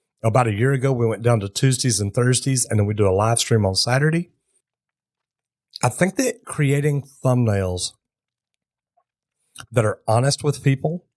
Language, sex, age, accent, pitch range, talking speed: English, male, 40-59, American, 110-135 Hz, 160 wpm